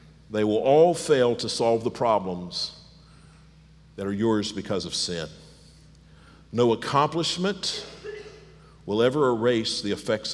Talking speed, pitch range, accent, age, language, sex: 120 wpm, 95-115 Hz, American, 50-69, English, male